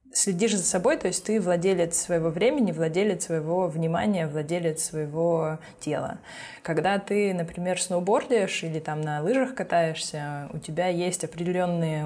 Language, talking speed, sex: Russian, 140 wpm, female